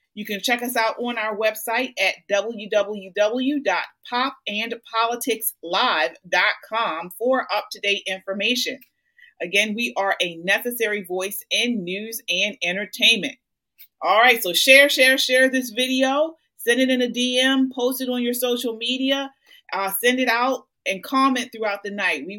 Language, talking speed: English, 140 wpm